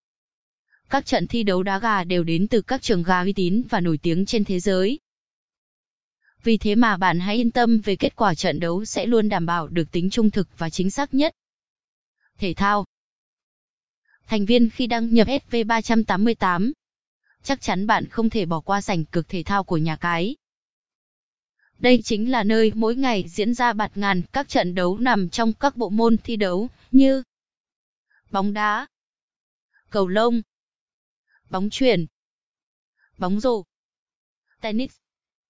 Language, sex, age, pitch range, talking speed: Vietnamese, female, 20-39, 185-230 Hz, 160 wpm